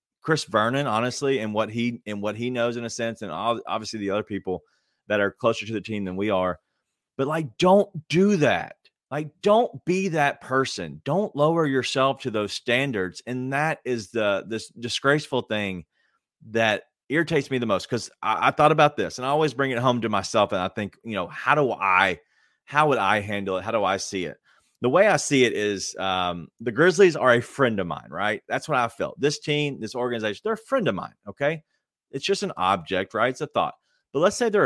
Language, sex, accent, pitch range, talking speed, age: English, male, American, 110-150 Hz, 220 wpm, 30-49